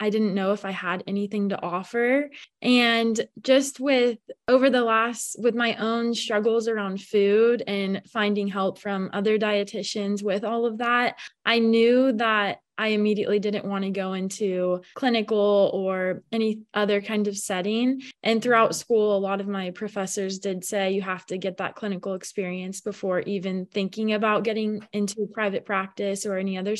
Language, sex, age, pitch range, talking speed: English, female, 20-39, 200-230 Hz, 170 wpm